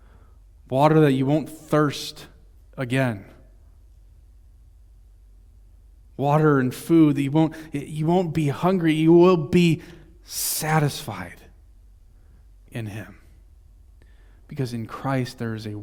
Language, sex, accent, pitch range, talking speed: English, male, American, 85-135 Hz, 100 wpm